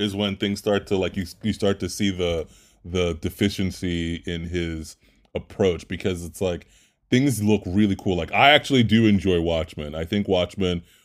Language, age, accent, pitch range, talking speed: English, 30-49, American, 90-105 Hz, 180 wpm